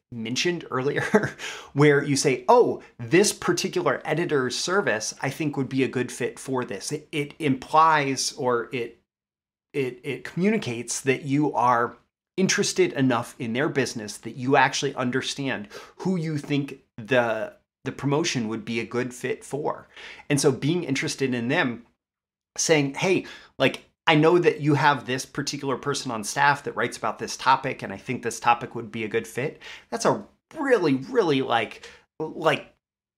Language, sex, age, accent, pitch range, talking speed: English, male, 30-49, American, 125-160 Hz, 165 wpm